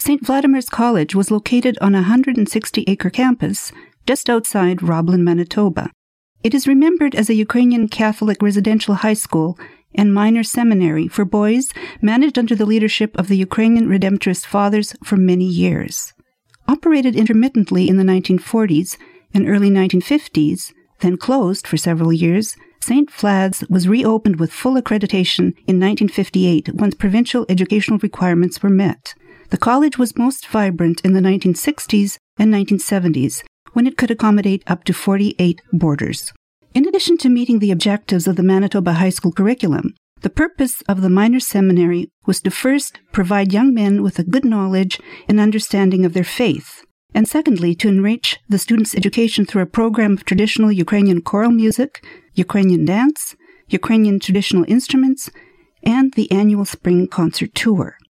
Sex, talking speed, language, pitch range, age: female, 150 wpm, English, 185-235 Hz, 50-69